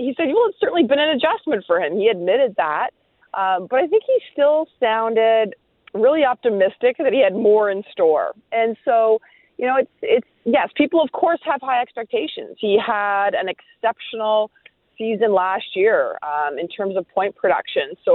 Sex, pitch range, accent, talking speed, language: female, 195-280 Hz, American, 180 wpm, English